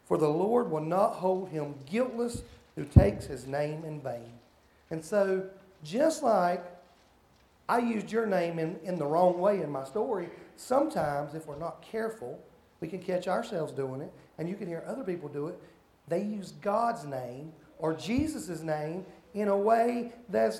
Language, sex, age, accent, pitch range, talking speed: English, male, 40-59, American, 150-225 Hz, 175 wpm